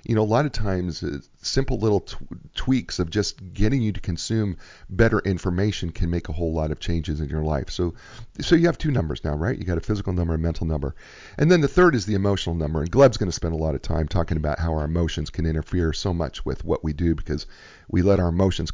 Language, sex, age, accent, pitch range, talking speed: English, male, 40-59, American, 80-110 Hz, 260 wpm